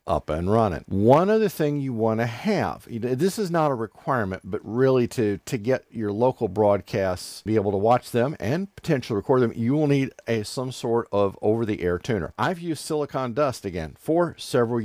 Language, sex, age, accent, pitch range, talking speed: English, male, 50-69, American, 105-135 Hz, 195 wpm